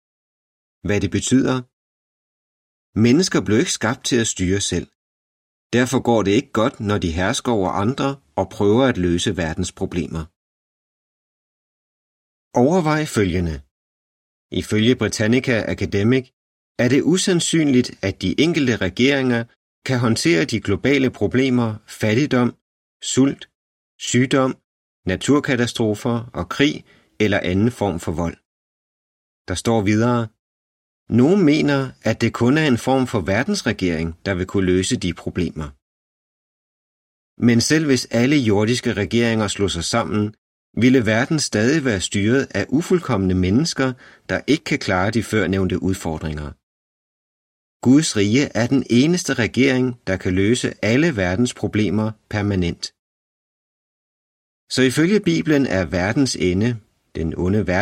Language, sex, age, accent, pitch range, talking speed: Danish, male, 30-49, native, 95-125 Hz, 120 wpm